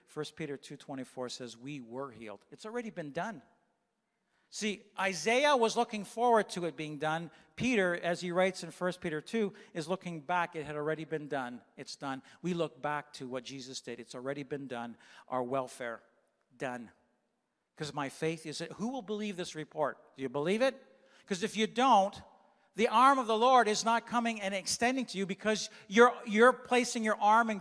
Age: 50-69